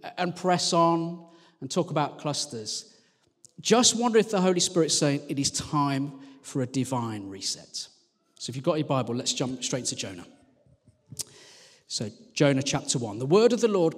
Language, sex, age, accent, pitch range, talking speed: English, male, 40-59, British, 135-180 Hz, 175 wpm